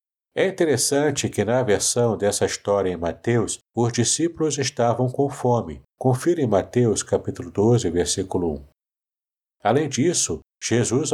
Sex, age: male, 60-79